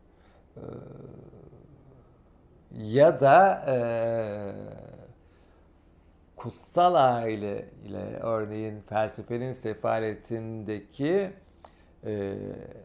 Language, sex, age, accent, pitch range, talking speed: Turkish, male, 50-69, native, 95-135 Hz, 45 wpm